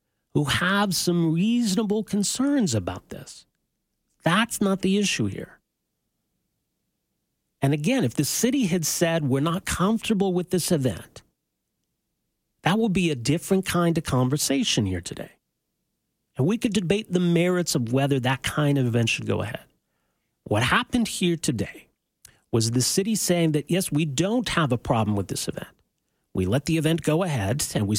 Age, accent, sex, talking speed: 40-59, American, male, 165 wpm